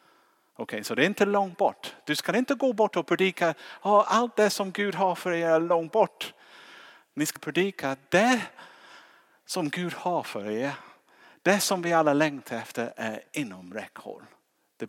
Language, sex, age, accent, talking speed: Swedish, male, 50-69, Norwegian, 185 wpm